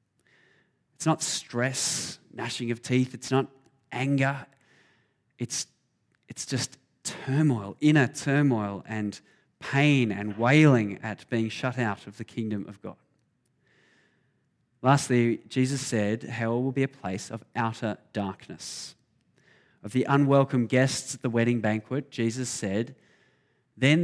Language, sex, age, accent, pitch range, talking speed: English, male, 20-39, Australian, 115-140 Hz, 125 wpm